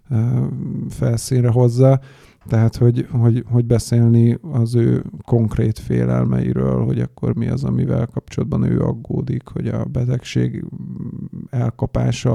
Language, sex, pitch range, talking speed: Hungarian, male, 110-120 Hz, 105 wpm